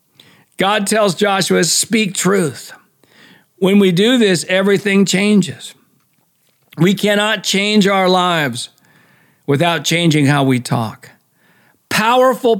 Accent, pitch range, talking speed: American, 150-190 Hz, 105 wpm